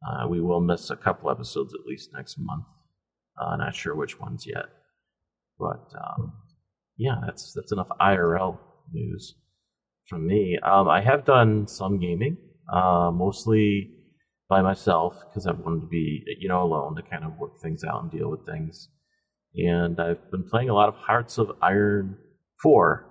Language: English